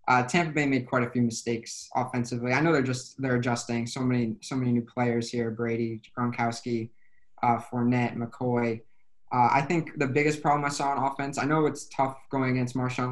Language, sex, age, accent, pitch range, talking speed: English, male, 20-39, American, 120-135 Hz, 200 wpm